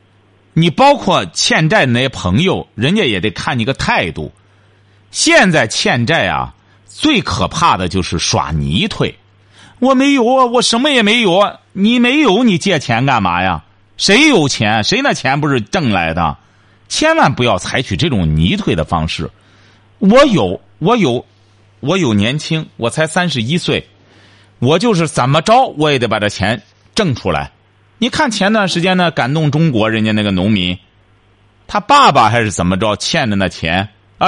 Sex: male